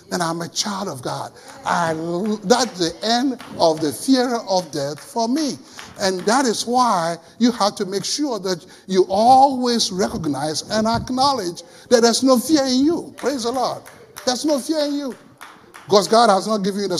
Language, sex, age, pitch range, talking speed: English, male, 60-79, 160-235 Hz, 185 wpm